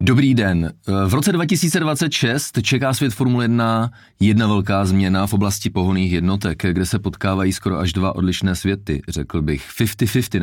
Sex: male